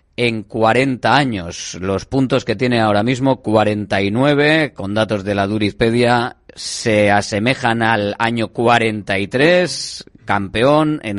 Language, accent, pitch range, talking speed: Spanish, Spanish, 100-130 Hz, 120 wpm